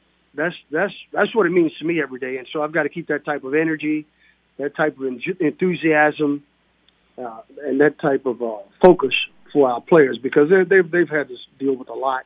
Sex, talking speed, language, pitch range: male, 220 wpm, English, 135-165 Hz